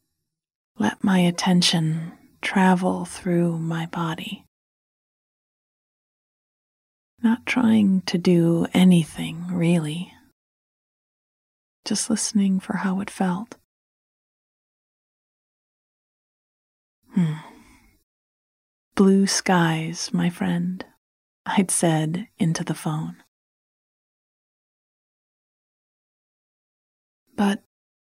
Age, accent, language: 30-49, American, English